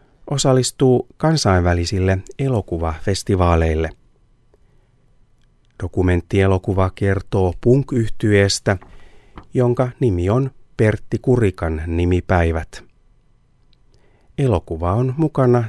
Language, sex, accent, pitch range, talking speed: Finnish, male, native, 95-125 Hz, 55 wpm